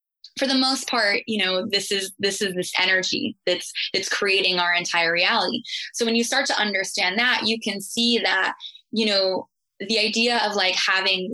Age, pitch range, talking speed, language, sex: 20-39, 185-225 Hz, 190 wpm, English, female